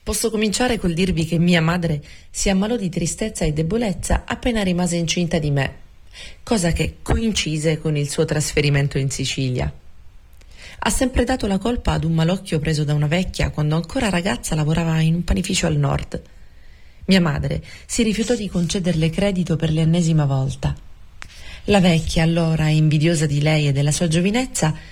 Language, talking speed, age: Italian, 165 wpm, 30-49